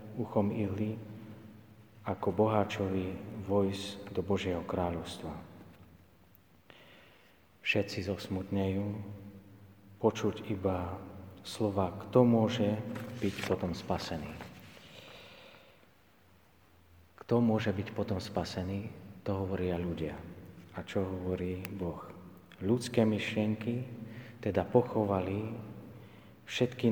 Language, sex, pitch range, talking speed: Slovak, male, 95-110 Hz, 80 wpm